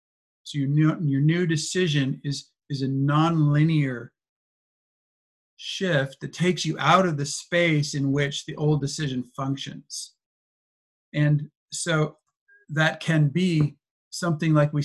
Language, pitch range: English, 140-160 Hz